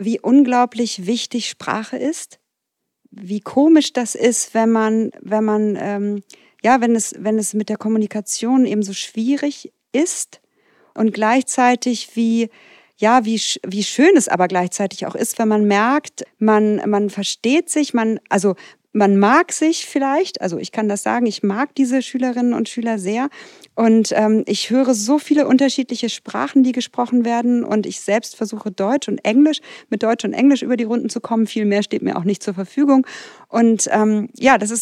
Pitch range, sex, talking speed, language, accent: 215-260 Hz, female, 175 wpm, German, German